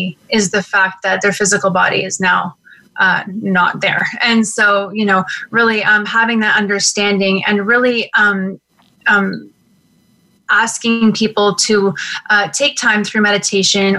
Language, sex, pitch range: English, female, 195-215 Hz